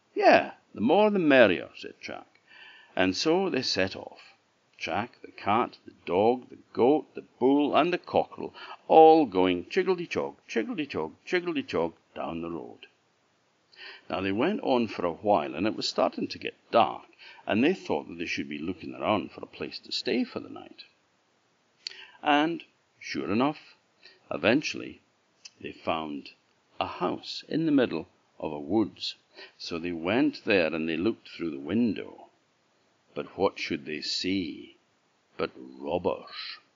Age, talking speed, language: 60-79, 160 wpm, English